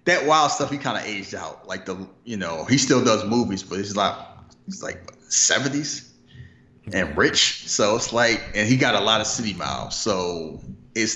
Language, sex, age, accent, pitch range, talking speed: English, male, 30-49, American, 95-115 Hz, 200 wpm